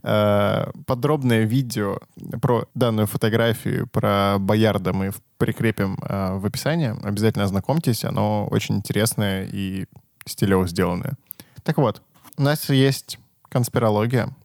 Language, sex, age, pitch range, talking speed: Russian, male, 10-29, 110-140 Hz, 105 wpm